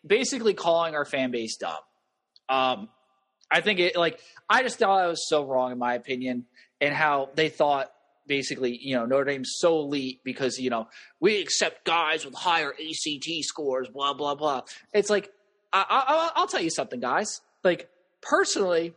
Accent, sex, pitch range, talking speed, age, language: American, male, 145-225 Hz, 175 wpm, 20-39, English